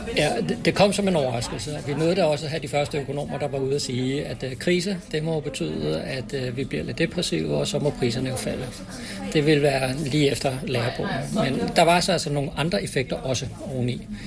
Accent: native